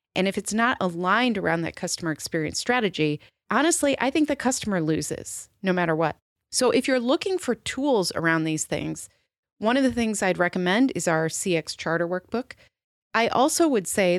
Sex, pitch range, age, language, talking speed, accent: female, 165-230 Hz, 30-49, English, 180 wpm, American